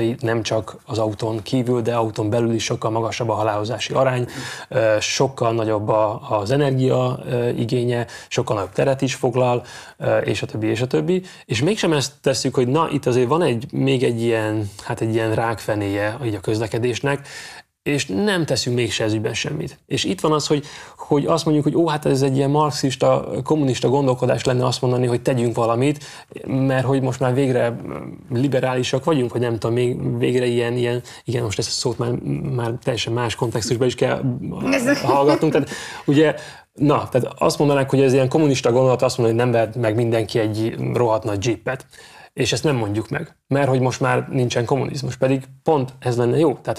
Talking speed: 185 wpm